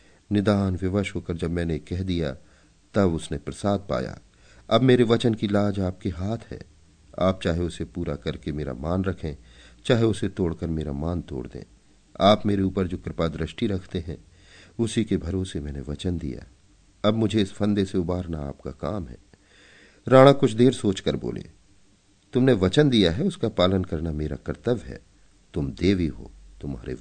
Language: Hindi